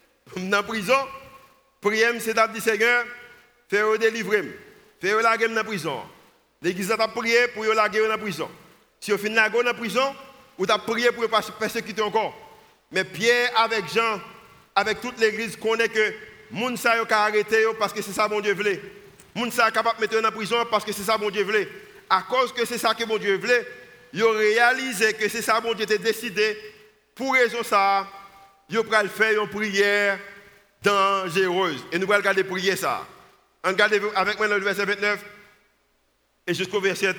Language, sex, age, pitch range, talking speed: French, male, 50-69, 205-240 Hz, 190 wpm